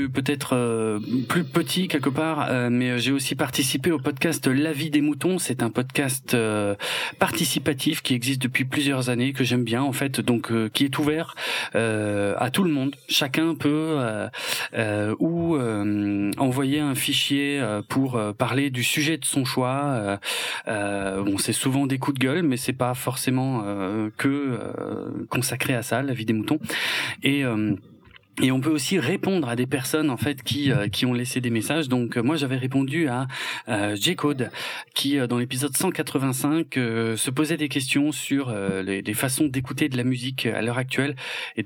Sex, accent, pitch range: male, French, 115-145 Hz